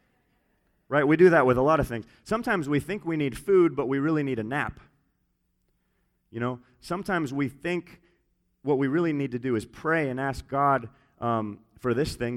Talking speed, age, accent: 200 wpm, 30-49, American